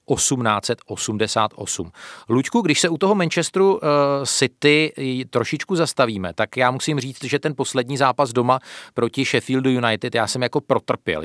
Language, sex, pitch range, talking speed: Czech, male, 110-135 Hz, 140 wpm